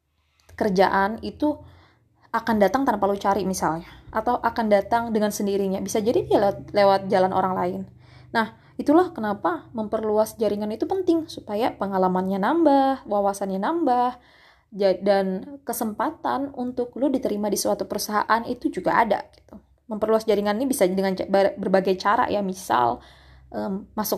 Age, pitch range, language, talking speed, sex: 20-39, 190-245 Hz, Indonesian, 135 wpm, female